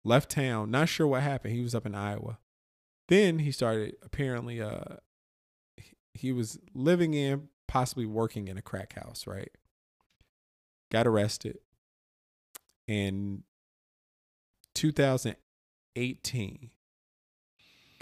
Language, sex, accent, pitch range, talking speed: English, male, American, 95-130 Hz, 105 wpm